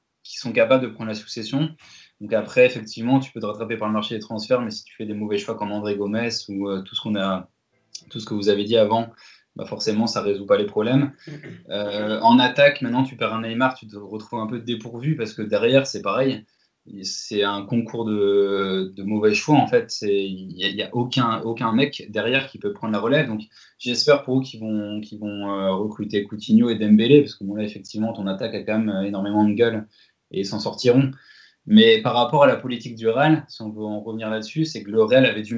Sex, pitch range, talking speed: male, 105-125 Hz, 235 wpm